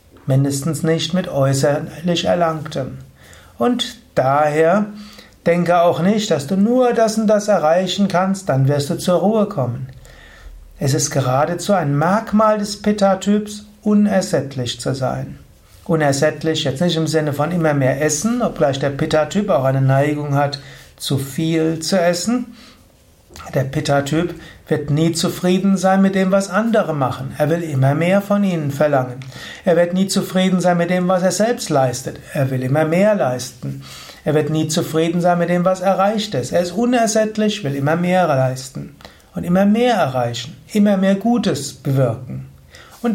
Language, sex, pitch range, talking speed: German, male, 140-195 Hz, 160 wpm